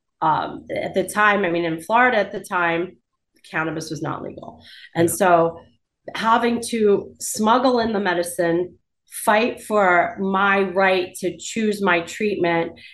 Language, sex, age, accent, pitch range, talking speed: English, female, 30-49, American, 185-225 Hz, 145 wpm